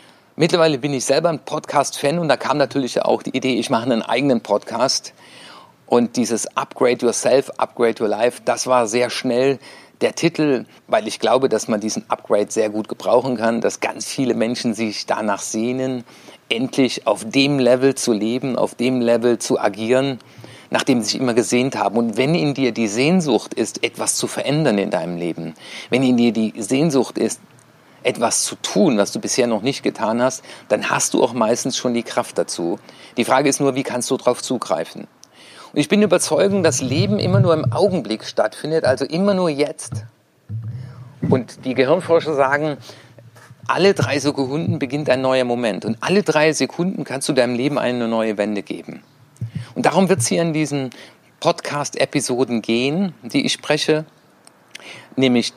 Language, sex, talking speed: German, male, 175 wpm